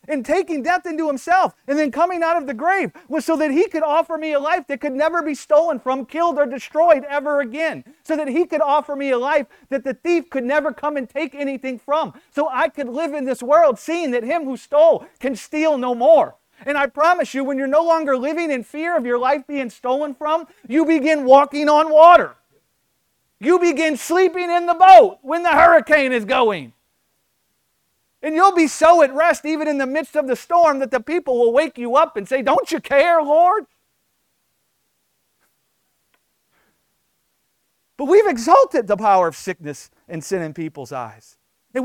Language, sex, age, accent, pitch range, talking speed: English, male, 40-59, American, 250-320 Hz, 200 wpm